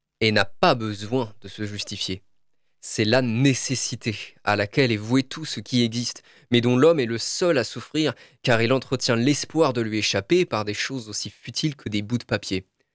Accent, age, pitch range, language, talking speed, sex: French, 20-39, 105-135 Hz, French, 200 wpm, male